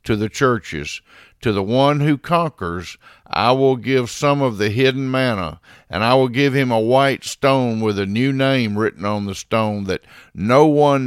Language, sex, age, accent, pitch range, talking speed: English, male, 50-69, American, 100-130 Hz, 190 wpm